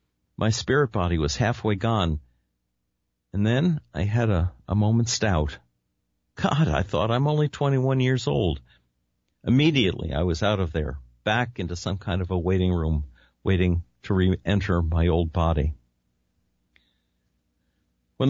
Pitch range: 75-110 Hz